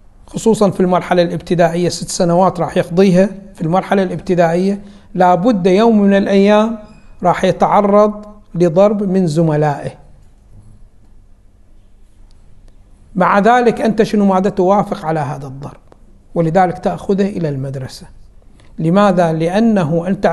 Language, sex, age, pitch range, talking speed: Arabic, male, 60-79, 170-215 Hz, 105 wpm